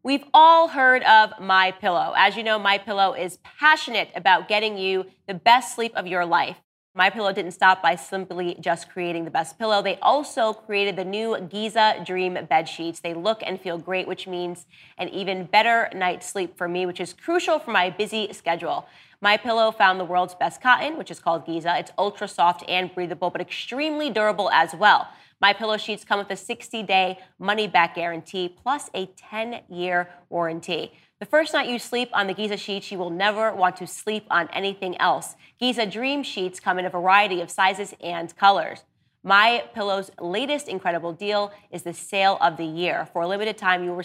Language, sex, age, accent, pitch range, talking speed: English, female, 20-39, American, 180-215 Hz, 190 wpm